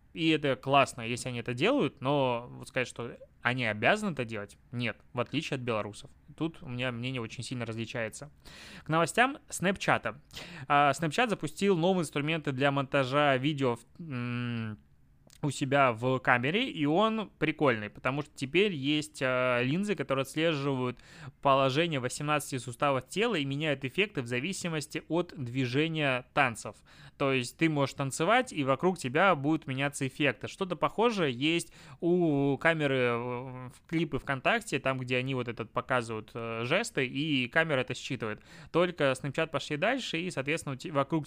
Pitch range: 125-155 Hz